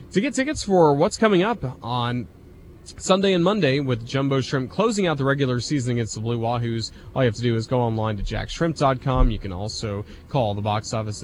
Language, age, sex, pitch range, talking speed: English, 30-49, male, 110-160 Hz, 215 wpm